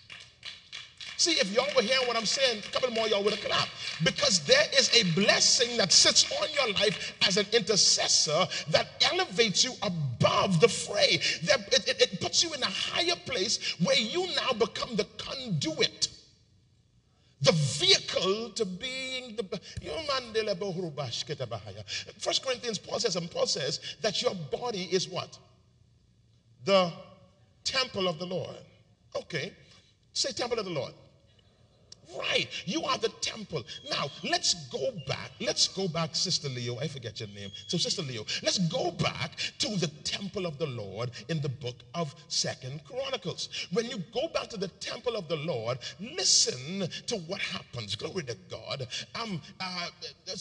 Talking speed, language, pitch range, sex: 160 wpm, English, 165-235 Hz, male